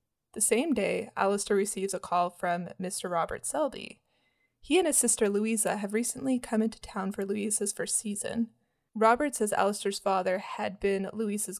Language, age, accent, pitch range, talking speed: English, 20-39, American, 200-230 Hz, 165 wpm